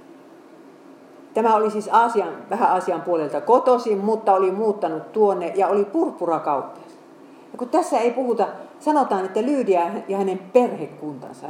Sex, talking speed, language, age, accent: female, 130 wpm, Finnish, 50-69, native